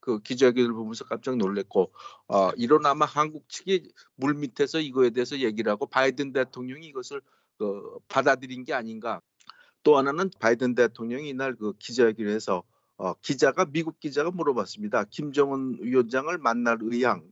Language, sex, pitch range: Korean, male, 115-150 Hz